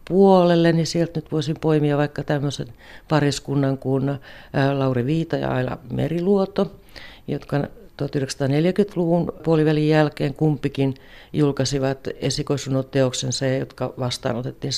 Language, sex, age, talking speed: Finnish, female, 50-69, 95 wpm